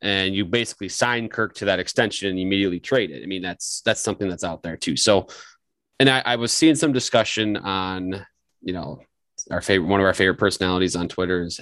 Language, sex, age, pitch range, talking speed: English, male, 30-49, 90-100 Hz, 215 wpm